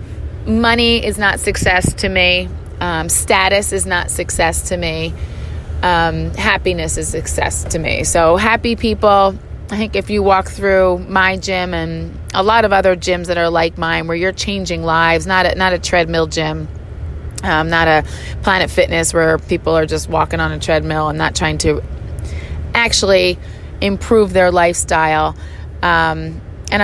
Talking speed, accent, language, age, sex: 160 wpm, American, English, 30-49, female